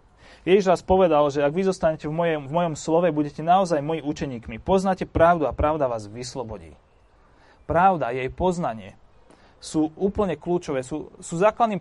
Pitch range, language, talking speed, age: 145-185 Hz, Slovak, 165 wpm, 30-49